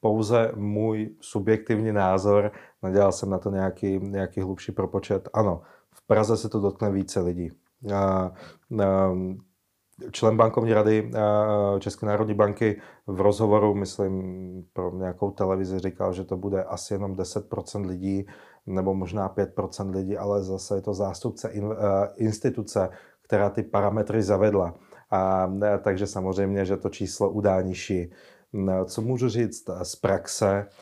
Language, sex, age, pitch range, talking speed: Czech, male, 30-49, 95-105 Hz, 130 wpm